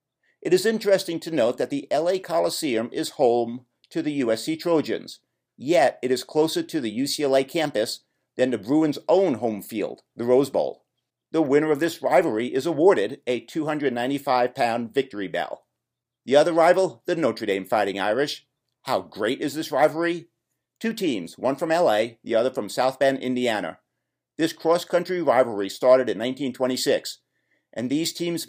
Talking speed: 160 wpm